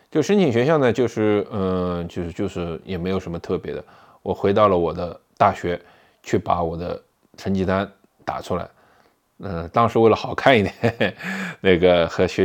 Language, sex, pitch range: Chinese, male, 90-130 Hz